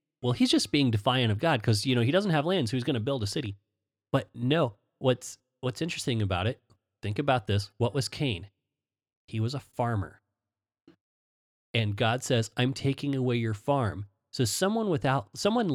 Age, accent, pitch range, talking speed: 30-49, American, 105-140 Hz, 190 wpm